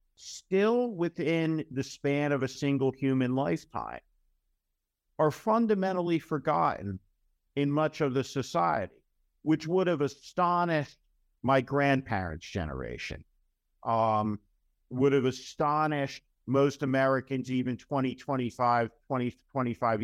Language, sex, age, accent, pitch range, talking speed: English, male, 50-69, American, 115-140 Hz, 105 wpm